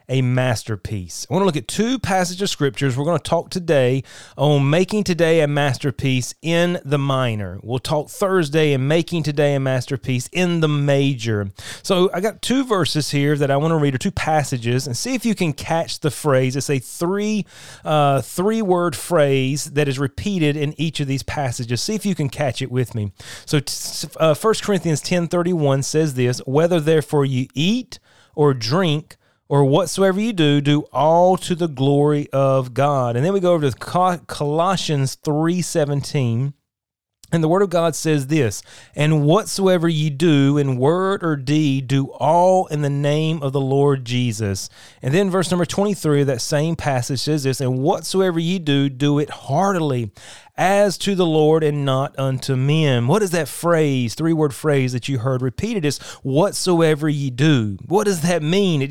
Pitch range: 135-175 Hz